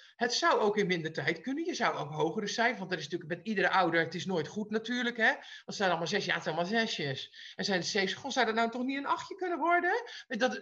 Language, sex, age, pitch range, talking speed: Dutch, male, 50-69, 185-250 Hz, 275 wpm